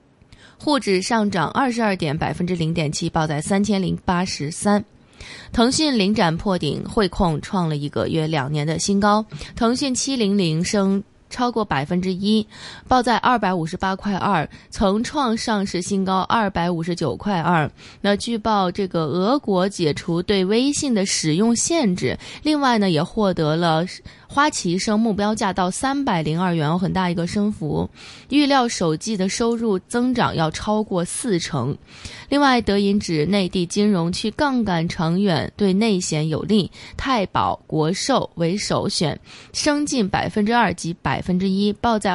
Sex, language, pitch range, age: female, Chinese, 170-225 Hz, 20-39